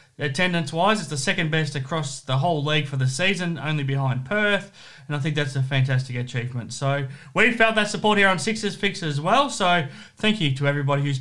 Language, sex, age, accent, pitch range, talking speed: English, male, 30-49, Australian, 135-180 Hz, 210 wpm